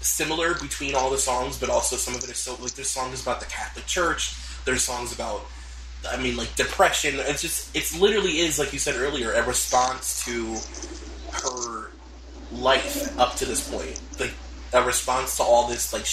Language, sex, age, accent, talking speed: English, male, 20-39, American, 190 wpm